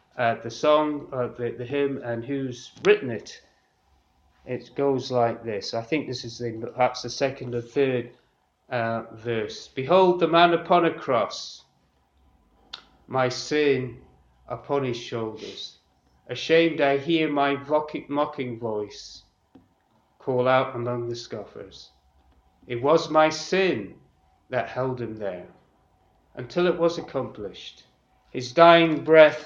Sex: male